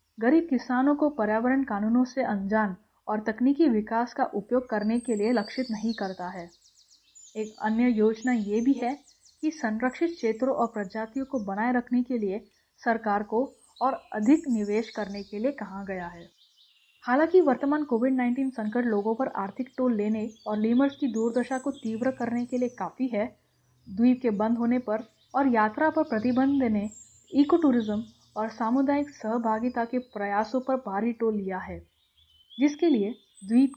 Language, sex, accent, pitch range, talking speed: Hindi, female, native, 215-260 Hz, 160 wpm